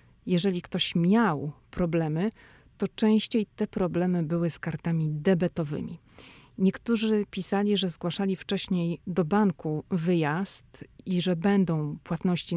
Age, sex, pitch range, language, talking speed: 30-49, female, 165-195 Hz, Polish, 115 wpm